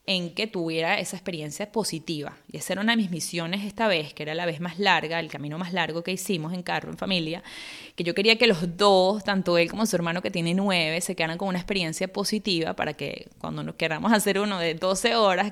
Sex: female